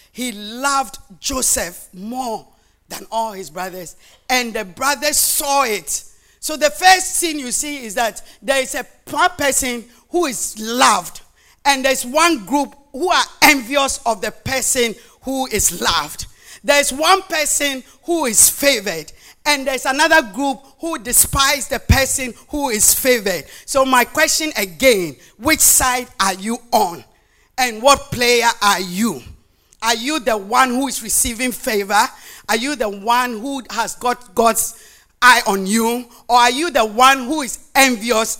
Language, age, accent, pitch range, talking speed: English, 50-69, Nigerian, 230-290 Hz, 155 wpm